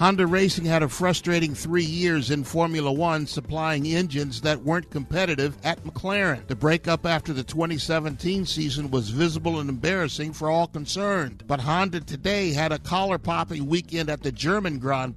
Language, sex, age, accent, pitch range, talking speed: English, male, 50-69, American, 150-185 Hz, 160 wpm